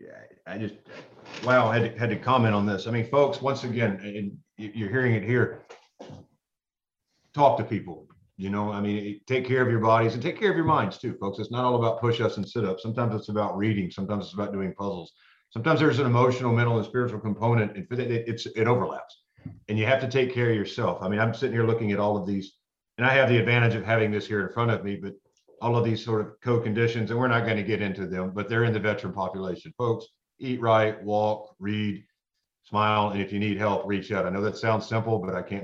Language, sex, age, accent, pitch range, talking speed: English, male, 50-69, American, 105-120 Hz, 245 wpm